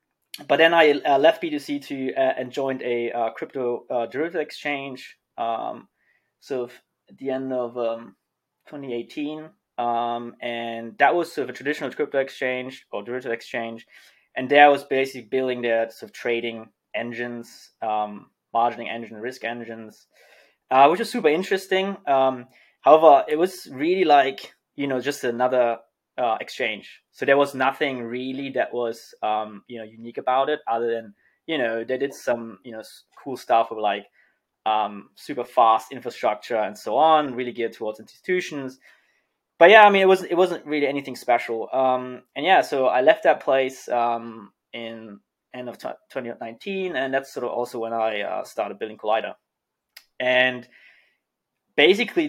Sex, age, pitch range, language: male, 20-39, 115-140 Hz, English